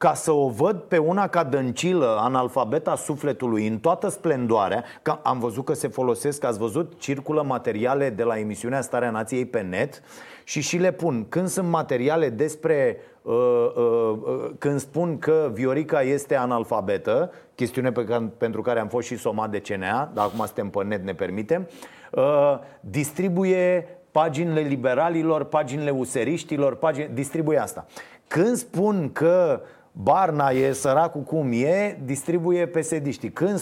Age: 30-49